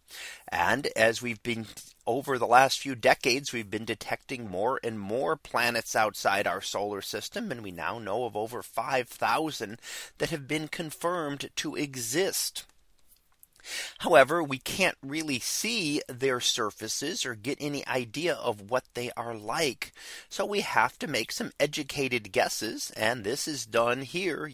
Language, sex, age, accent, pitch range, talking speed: English, male, 30-49, American, 115-150 Hz, 150 wpm